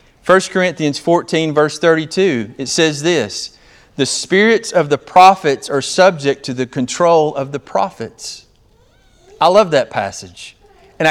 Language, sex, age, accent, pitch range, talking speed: English, male, 40-59, American, 115-160 Hz, 140 wpm